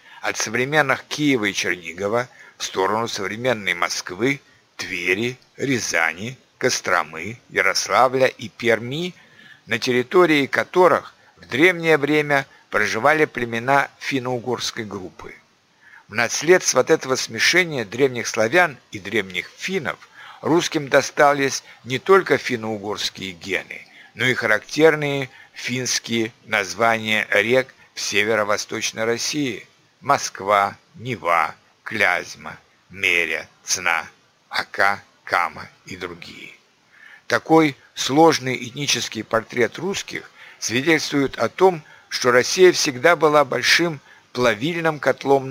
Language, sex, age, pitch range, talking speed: Russian, male, 60-79, 120-150 Hz, 100 wpm